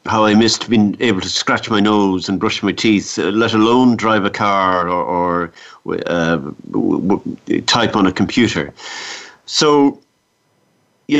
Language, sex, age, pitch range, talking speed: English, male, 50-69, 90-110 Hz, 170 wpm